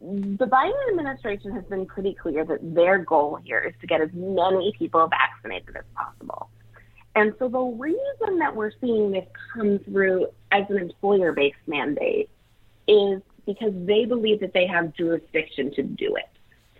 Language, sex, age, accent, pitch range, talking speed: English, female, 30-49, American, 170-240 Hz, 160 wpm